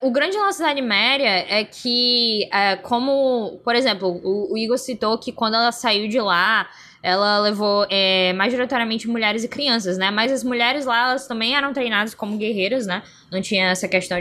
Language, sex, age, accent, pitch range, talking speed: Portuguese, female, 10-29, Brazilian, 210-280 Hz, 185 wpm